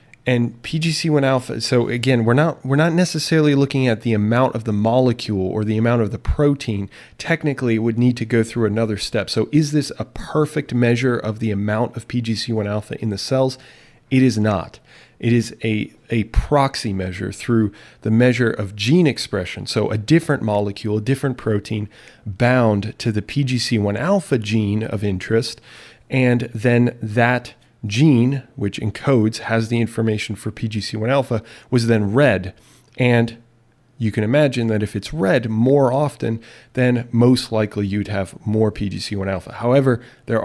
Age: 30-49